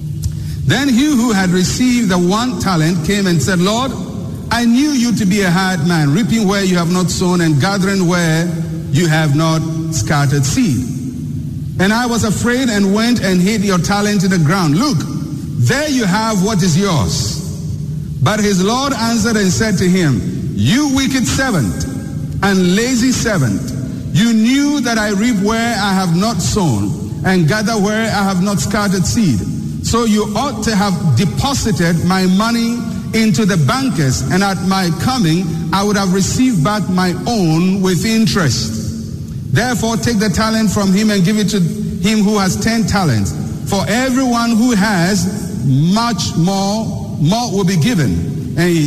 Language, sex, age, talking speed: English, male, 50-69, 165 wpm